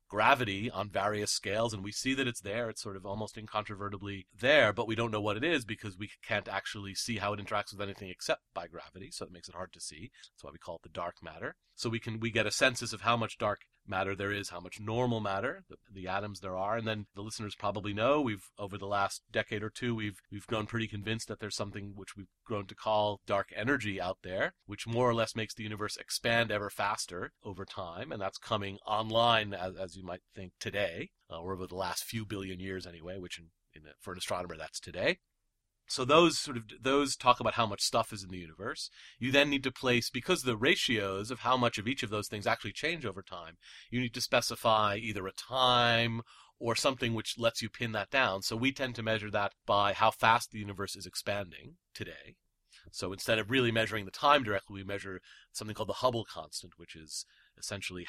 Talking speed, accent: 230 wpm, American